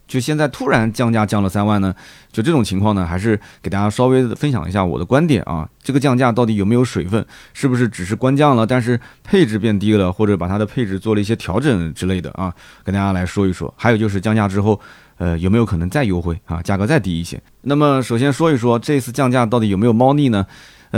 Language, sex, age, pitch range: Chinese, male, 20-39, 95-125 Hz